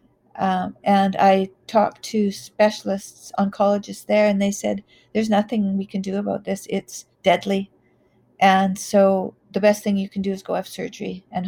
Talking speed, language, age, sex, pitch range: 175 wpm, English, 50-69, female, 190-215 Hz